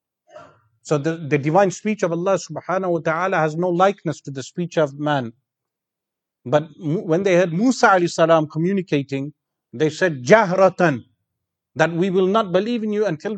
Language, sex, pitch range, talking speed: English, male, 145-185 Hz, 165 wpm